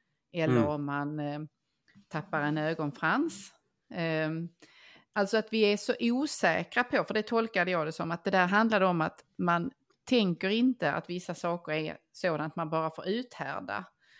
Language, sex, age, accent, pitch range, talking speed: English, female, 30-49, Swedish, 160-200 Hz, 165 wpm